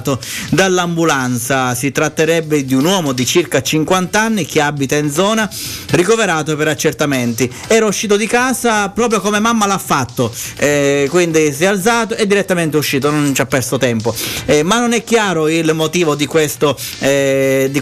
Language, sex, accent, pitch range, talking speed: Italian, male, native, 135-165 Hz, 160 wpm